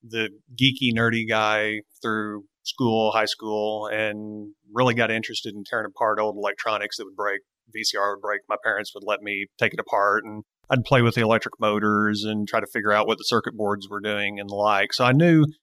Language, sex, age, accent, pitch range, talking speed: English, male, 30-49, American, 105-115 Hz, 210 wpm